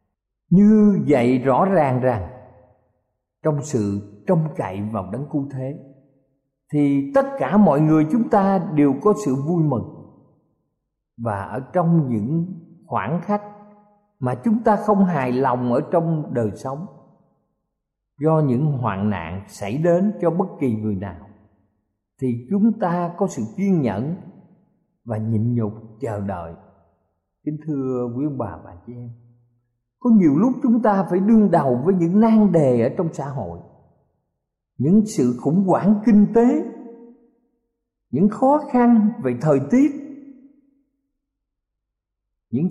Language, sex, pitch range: Thai, male, 120-200 Hz